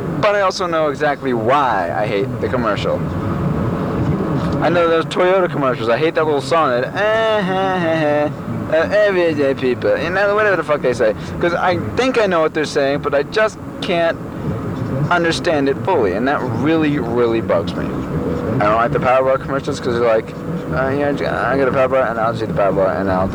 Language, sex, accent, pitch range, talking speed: English, male, American, 130-170 Hz, 205 wpm